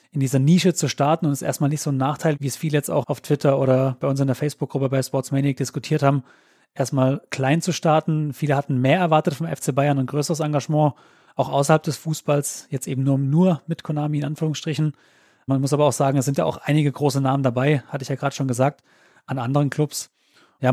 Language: German